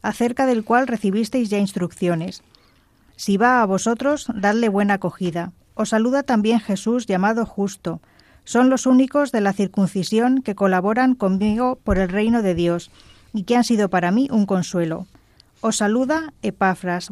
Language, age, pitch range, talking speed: Spanish, 20-39, 190-235 Hz, 155 wpm